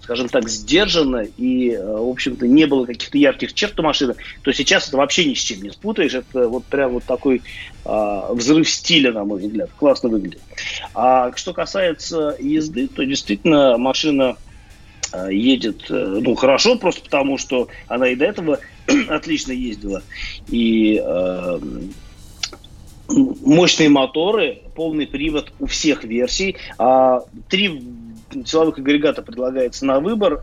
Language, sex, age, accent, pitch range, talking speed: Russian, male, 30-49, native, 120-160 Hz, 140 wpm